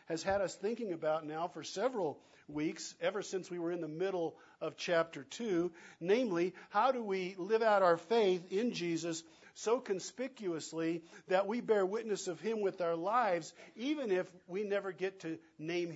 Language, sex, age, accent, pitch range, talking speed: English, male, 50-69, American, 165-205 Hz, 175 wpm